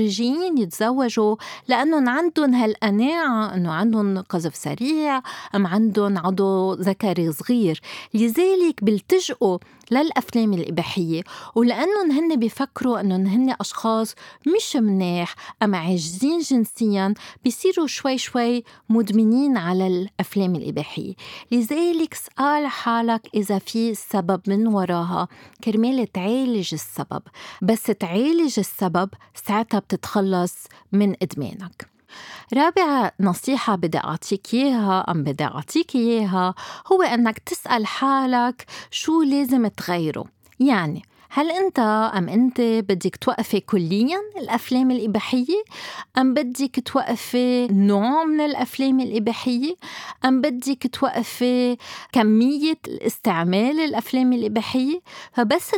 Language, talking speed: Arabic, 100 wpm